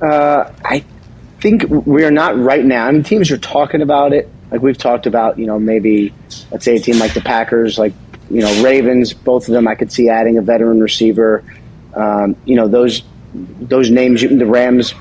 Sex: male